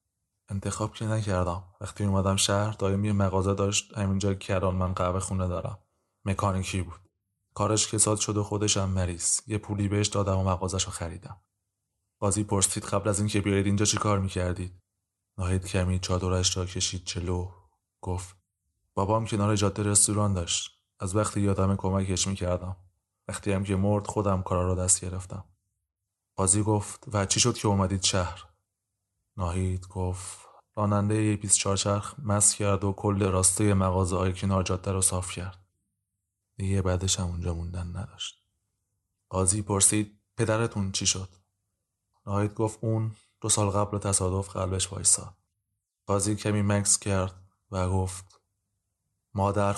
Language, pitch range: Persian, 95-105 Hz